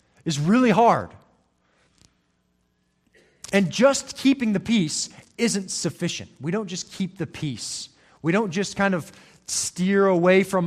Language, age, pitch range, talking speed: English, 30-49, 115-190 Hz, 135 wpm